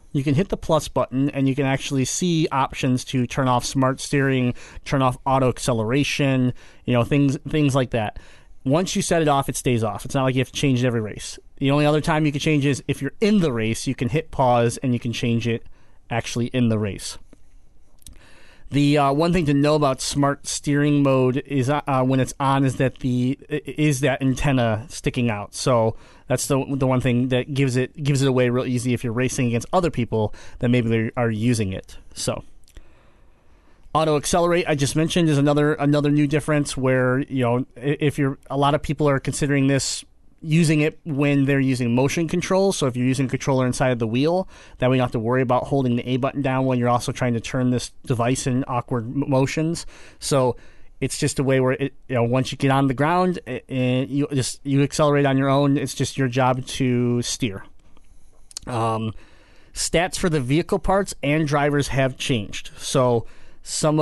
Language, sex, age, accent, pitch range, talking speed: English, male, 30-49, American, 125-145 Hz, 210 wpm